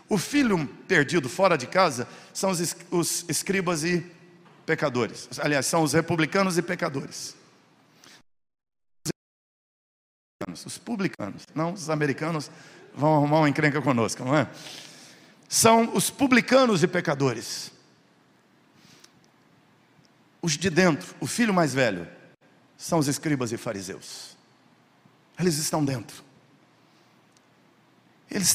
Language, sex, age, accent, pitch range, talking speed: Portuguese, male, 50-69, Brazilian, 170-235 Hz, 105 wpm